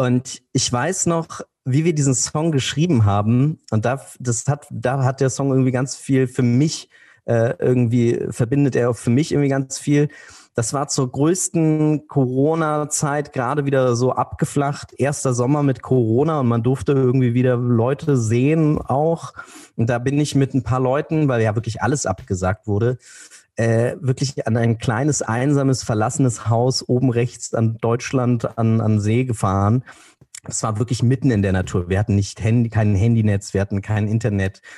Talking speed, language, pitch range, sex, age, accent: 175 wpm, German, 110-135 Hz, male, 30-49, German